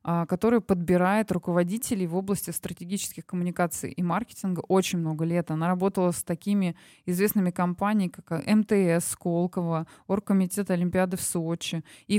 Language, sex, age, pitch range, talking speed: Russian, female, 20-39, 175-205 Hz, 130 wpm